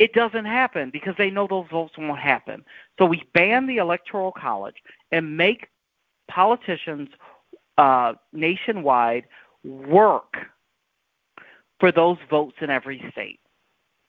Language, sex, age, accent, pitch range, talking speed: English, male, 40-59, American, 145-205 Hz, 120 wpm